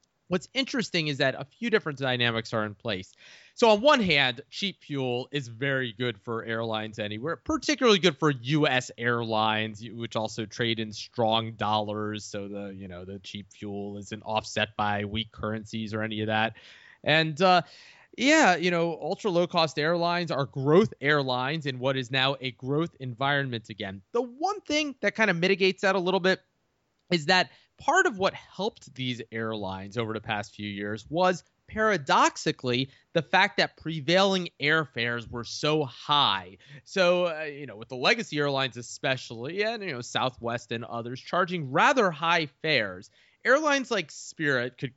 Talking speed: 170 wpm